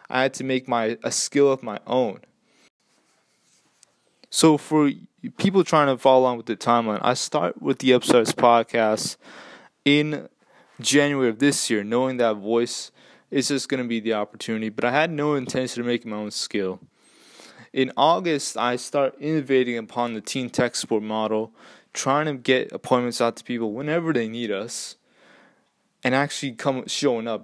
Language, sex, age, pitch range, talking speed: English, male, 20-39, 115-135 Hz, 170 wpm